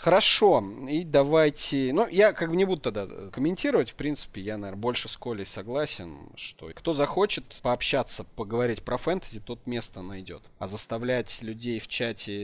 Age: 30-49